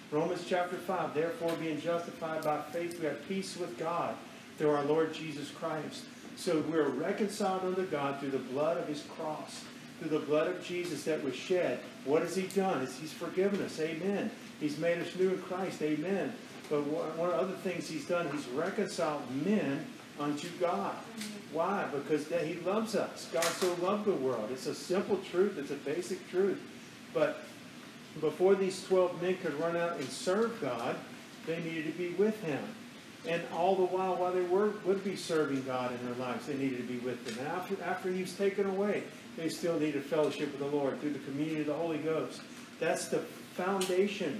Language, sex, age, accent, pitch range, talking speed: English, male, 50-69, American, 150-185 Hz, 195 wpm